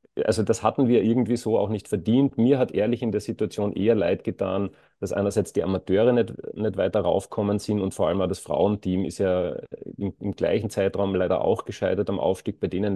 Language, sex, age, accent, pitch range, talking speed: German, male, 30-49, German, 95-110 Hz, 210 wpm